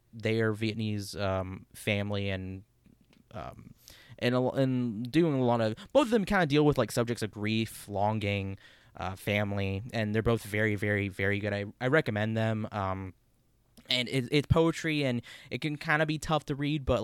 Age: 20-39